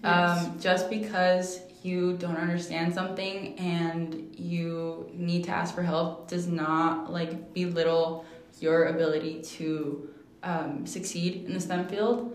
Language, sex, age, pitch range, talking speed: English, female, 20-39, 170-200 Hz, 130 wpm